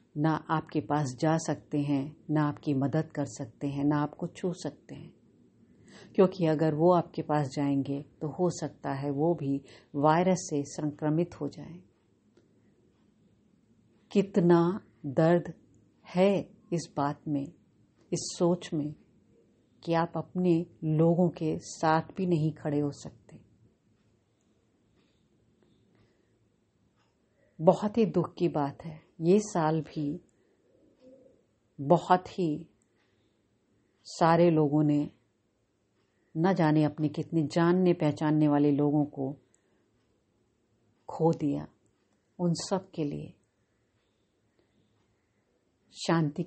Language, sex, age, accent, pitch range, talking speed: Hindi, female, 50-69, native, 130-165 Hz, 110 wpm